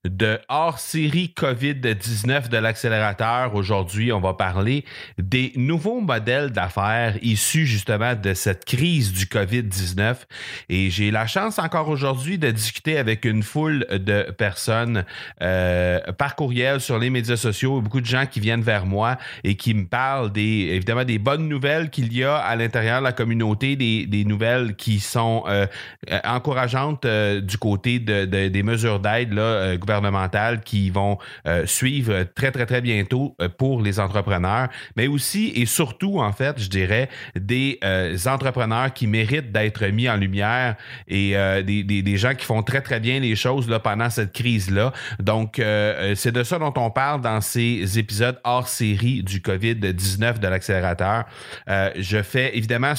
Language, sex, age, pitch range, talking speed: French, male, 30-49, 100-130 Hz, 165 wpm